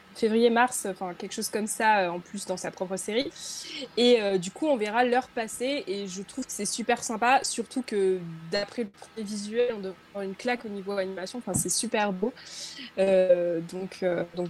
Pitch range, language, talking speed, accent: 190-250 Hz, French, 205 wpm, French